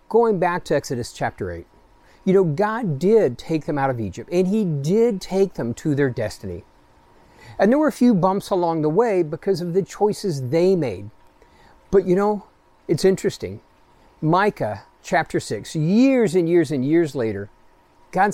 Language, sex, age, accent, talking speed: English, male, 40-59, American, 175 wpm